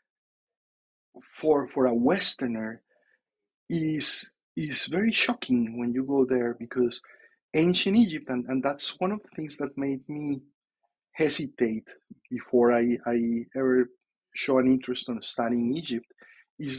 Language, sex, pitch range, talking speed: English, male, 120-155 Hz, 130 wpm